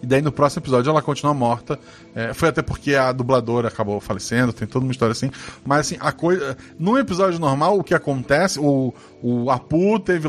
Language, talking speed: Portuguese, 210 wpm